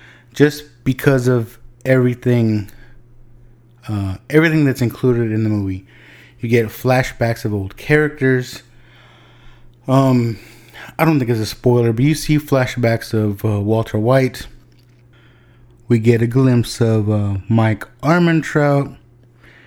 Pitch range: 115-125 Hz